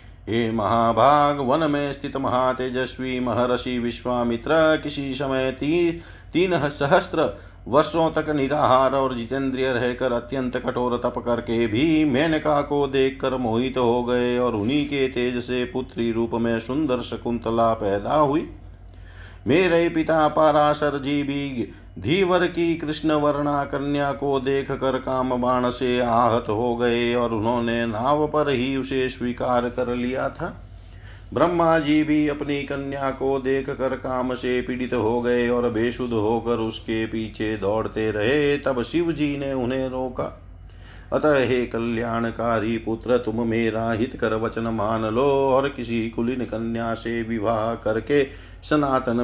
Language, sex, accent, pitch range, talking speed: Hindi, male, native, 115-135 Hz, 140 wpm